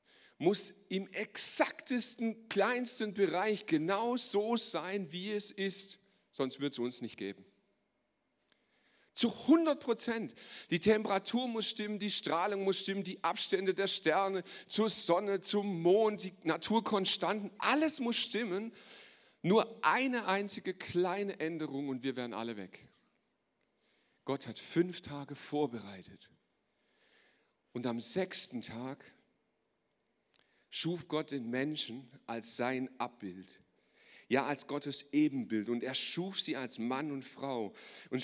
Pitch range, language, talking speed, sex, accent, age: 125-200 Hz, German, 125 wpm, male, German, 40-59